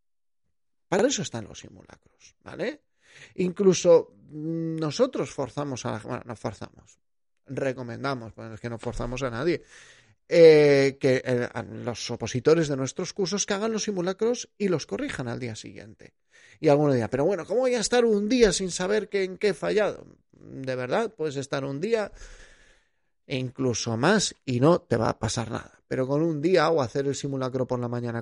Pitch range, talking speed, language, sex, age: 120-155 Hz, 185 wpm, Spanish, male, 30-49